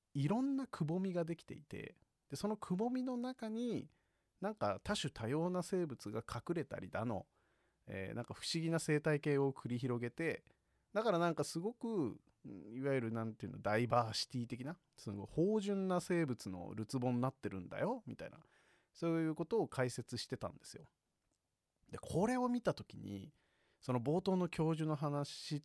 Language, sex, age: Japanese, male, 40-59